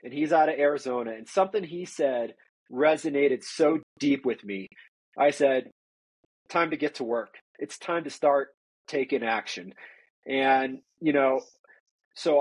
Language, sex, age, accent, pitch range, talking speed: English, male, 30-49, American, 130-180 Hz, 150 wpm